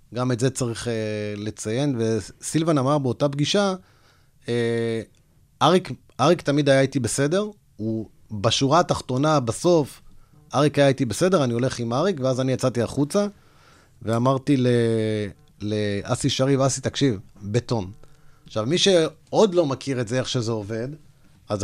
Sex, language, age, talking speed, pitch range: male, Hebrew, 30-49, 140 wpm, 110-145 Hz